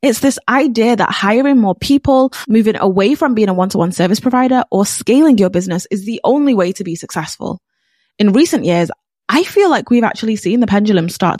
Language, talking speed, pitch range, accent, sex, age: English, 200 wpm, 180-255 Hz, British, female, 20-39